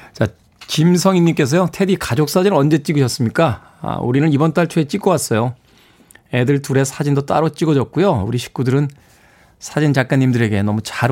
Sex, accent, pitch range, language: male, native, 110-170 Hz, Korean